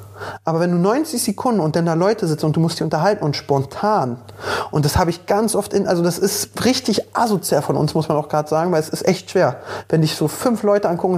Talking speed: 250 wpm